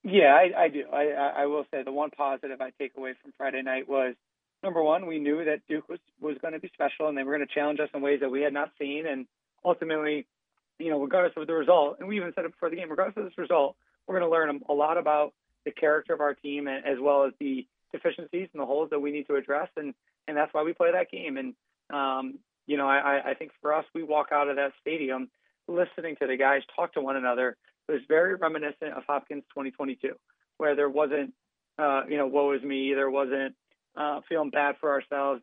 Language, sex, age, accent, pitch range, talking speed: English, male, 30-49, American, 140-160 Hz, 240 wpm